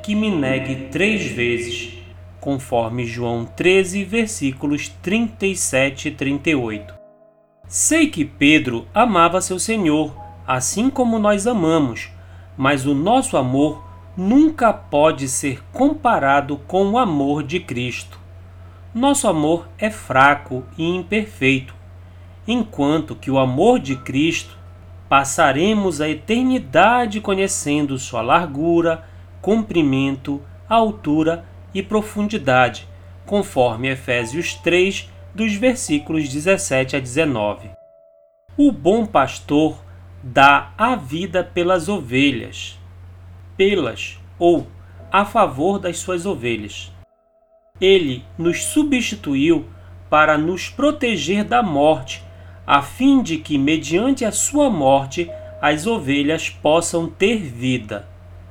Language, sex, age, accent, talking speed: Portuguese, male, 40-59, Brazilian, 105 wpm